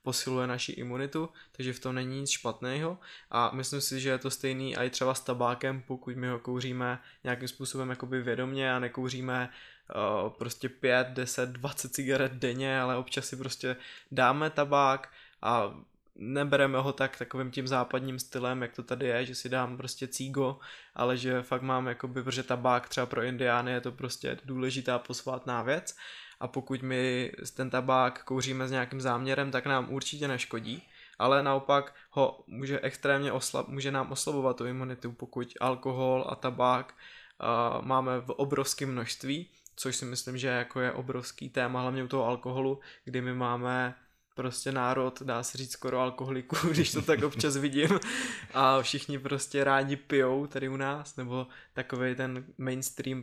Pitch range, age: 125-135 Hz, 20-39